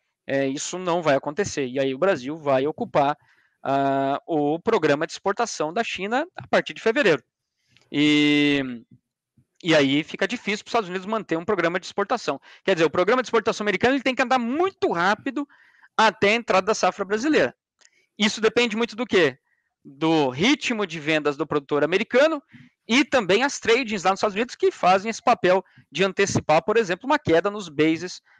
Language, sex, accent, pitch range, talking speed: Portuguese, male, Brazilian, 150-225 Hz, 185 wpm